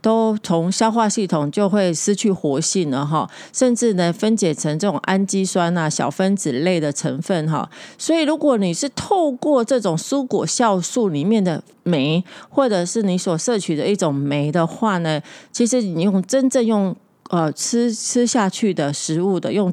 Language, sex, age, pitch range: Chinese, female, 40-59, 165-225 Hz